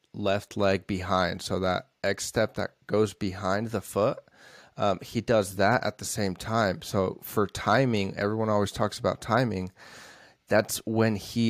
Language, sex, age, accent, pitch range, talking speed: English, male, 20-39, American, 95-110 Hz, 160 wpm